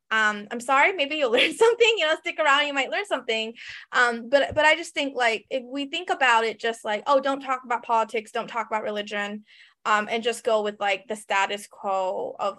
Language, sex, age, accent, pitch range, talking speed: English, female, 20-39, American, 210-270 Hz, 230 wpm